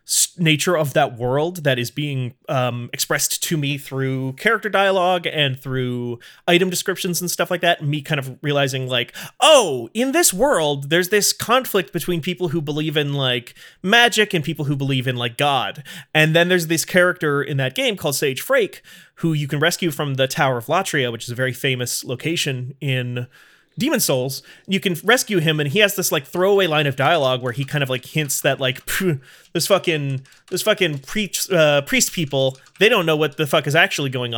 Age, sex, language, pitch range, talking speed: 30-49, male, English, 135-175 Hz, 200 wpm